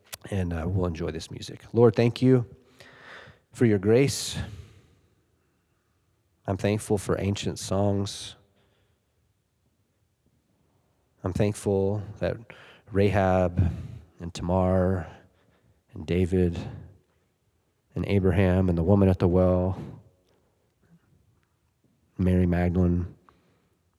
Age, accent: 30-49, American